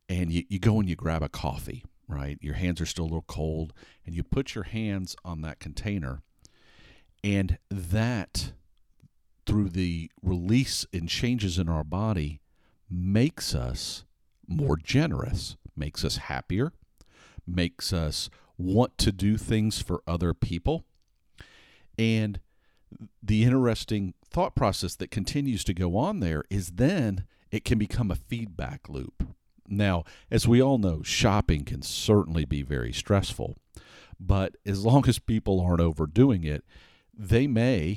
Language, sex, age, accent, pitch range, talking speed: English, male, 50-69, American, 85-110 Hz, 145 wpm